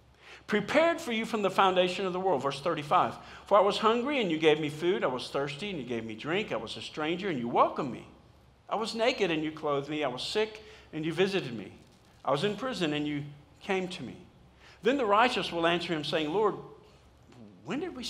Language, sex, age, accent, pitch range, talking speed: English, male, 50-69, American, 135-195 Hz, 230 wpm